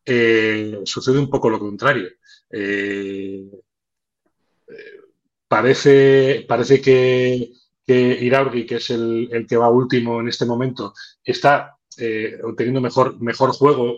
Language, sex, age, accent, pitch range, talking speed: Spanish, male, 30-49, Spanish, 115-135 Hz, 120 wpm